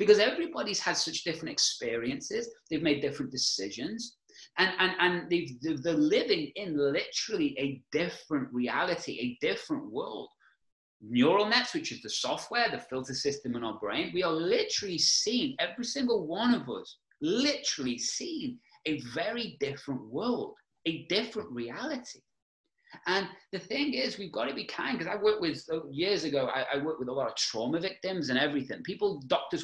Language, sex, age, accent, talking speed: English, male, 30-49, British, 165 wpm